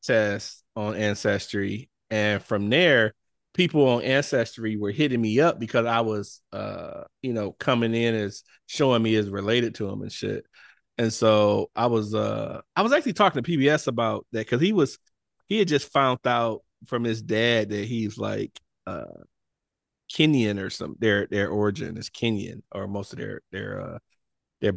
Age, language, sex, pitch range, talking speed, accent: 30-49, English, male, 105-130 Hz, 175 wpm, American